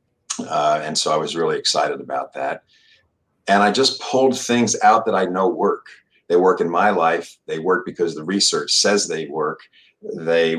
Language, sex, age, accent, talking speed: English, male, 50-69, American, 185 wpm